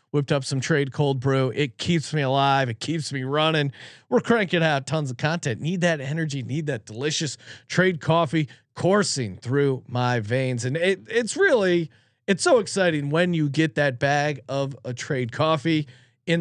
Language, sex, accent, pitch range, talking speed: English, male, American, 130-170 Hz, 180 wpm